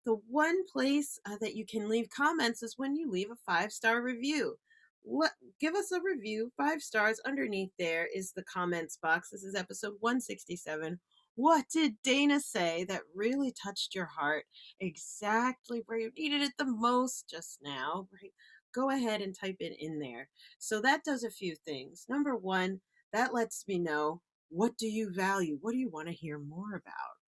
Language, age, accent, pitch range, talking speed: English, 40-59, American, 170-235 Hz, 185 wpm